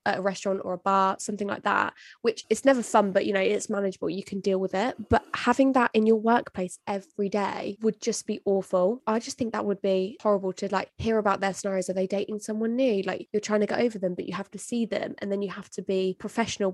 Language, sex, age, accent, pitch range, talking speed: English, female, 20-39, British, 195-220 Hz, 260 wpm